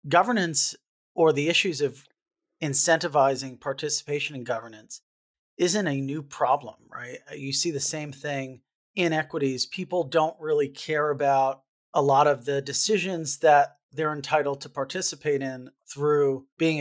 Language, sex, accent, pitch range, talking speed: English, male, American, 135-160 Hz, 140 wpm